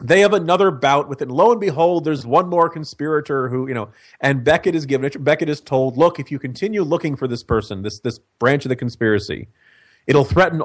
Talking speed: 225 wpm